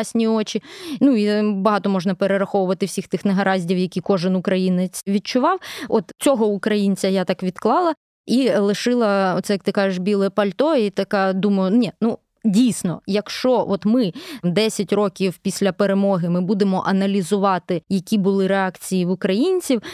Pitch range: 195-225 Hz